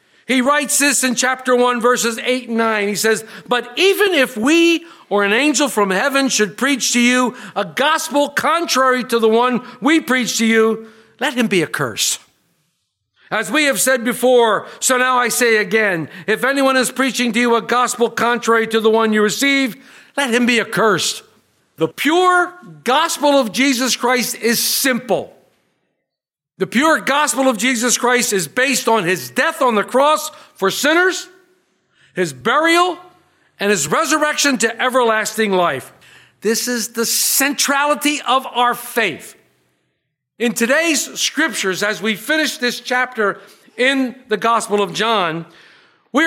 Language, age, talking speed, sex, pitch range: English, 50-69, 155 wpm, male, 220-275 Hz